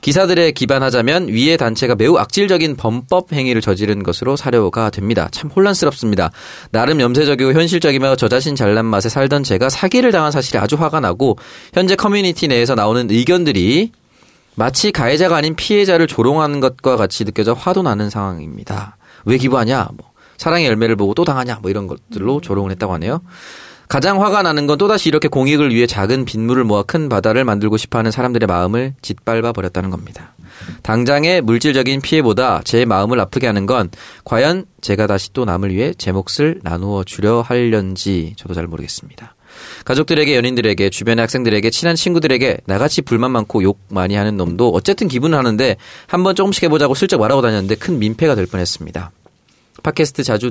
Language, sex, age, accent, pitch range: Korean, male, 30-49, native, 105-150 Hz